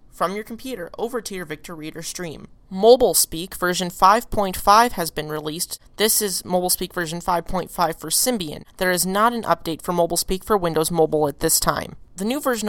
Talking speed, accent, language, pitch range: 180 wpm, American, English, 165-205 Hz